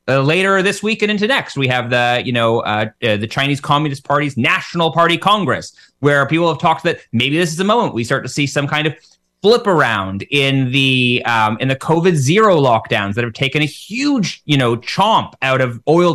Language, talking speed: English, 220 wpm